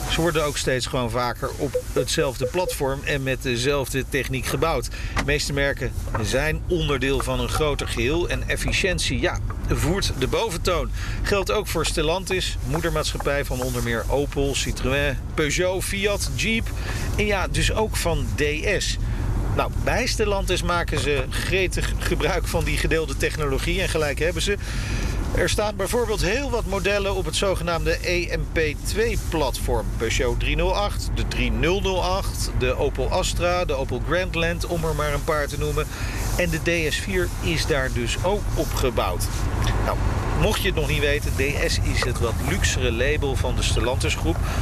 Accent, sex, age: Dutch, male, 40-59